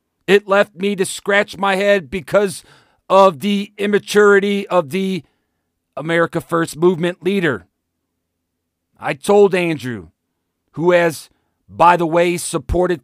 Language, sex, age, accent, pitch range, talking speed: English, male, 40-59, American, 130-185 Hz, 120 wpm